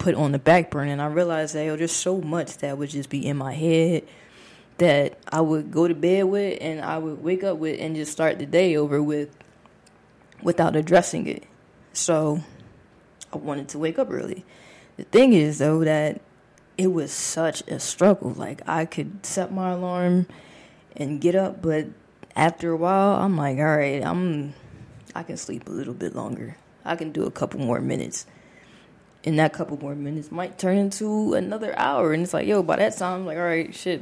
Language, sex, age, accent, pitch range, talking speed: English, female, 20-39, American, 150-180 Hz, 200 wpm